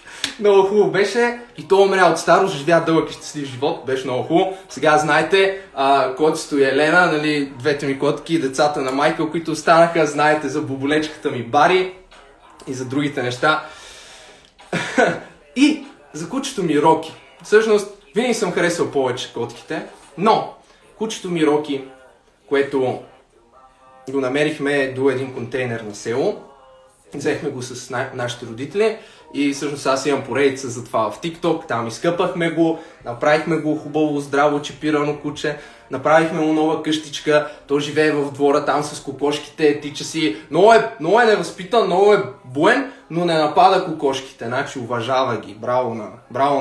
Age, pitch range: 20-39, 135-170 Hz